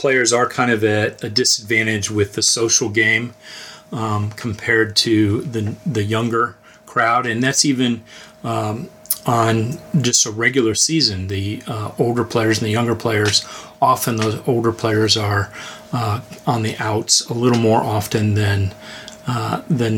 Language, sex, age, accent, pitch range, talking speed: English, male, 30-49, American, 110-125 Hz, 155 wpm